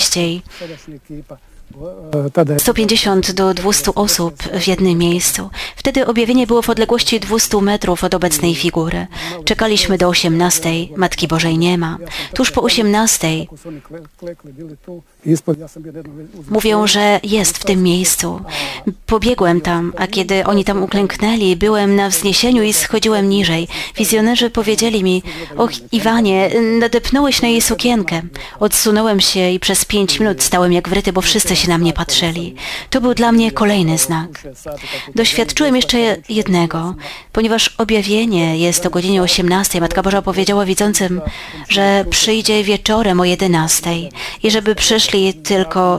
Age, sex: 30-49, female